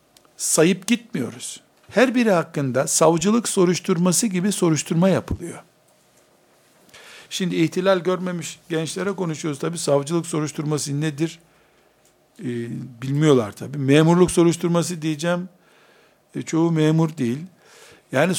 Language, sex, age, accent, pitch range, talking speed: Turkish, male, 60-79, native, 150-190 Hz, 100 wpm